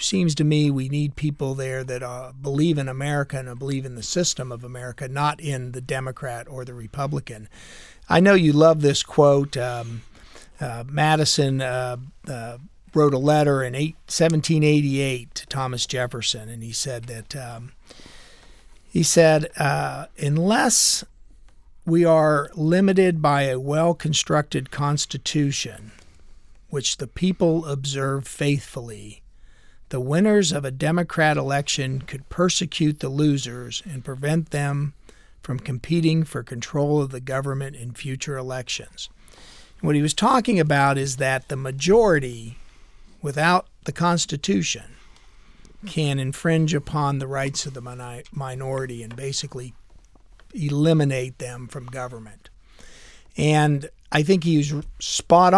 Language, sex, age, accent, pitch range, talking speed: English, male, 50-69, American, 130-155 Hz, 125 wpm